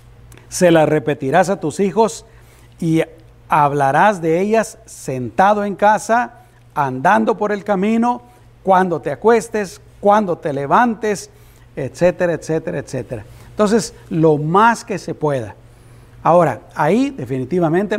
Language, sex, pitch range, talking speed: Spanish, male, 125-180 Hz, 115 wpm